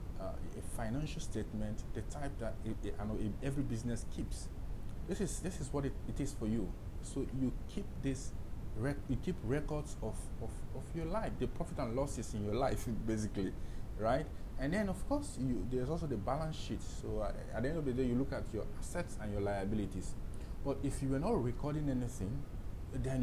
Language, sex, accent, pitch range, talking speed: English, male, Nigerian, 95-135 Hz, 210 wpm